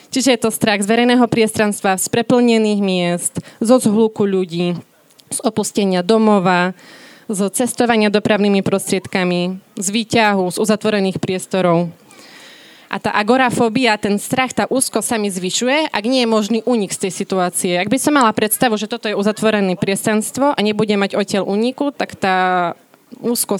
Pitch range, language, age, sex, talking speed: 190-230 Hz, Slovak, 20-39, female, 155 wpm